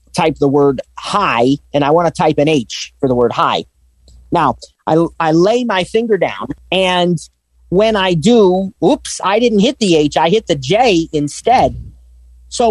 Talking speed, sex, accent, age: 180 wpm, male, American, 40-59